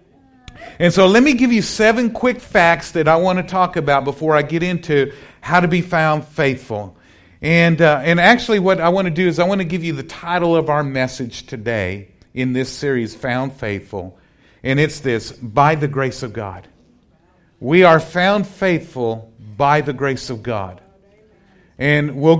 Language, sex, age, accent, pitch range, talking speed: English, male, 50-69, American, 130-180 Hz, 185 wpm